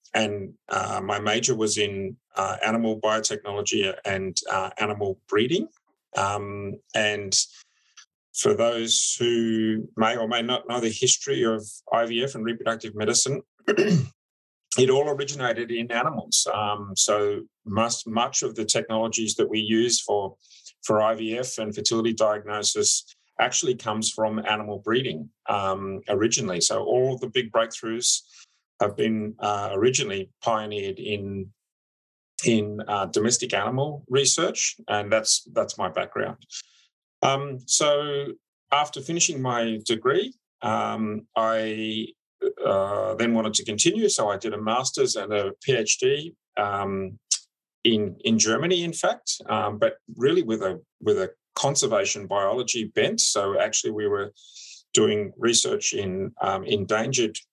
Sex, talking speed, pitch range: male, 130 wpm, 105-140 Hz